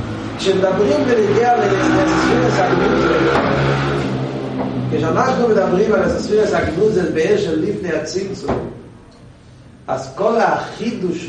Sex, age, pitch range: male, 40-59, 180-230 Hz